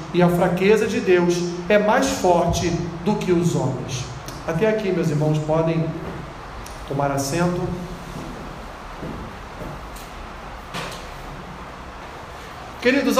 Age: 40-59